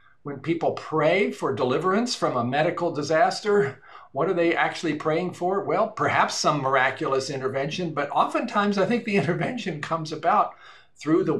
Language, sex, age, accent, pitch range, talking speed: English, male, 50-69, American, 130-170 Hz, 160 wpm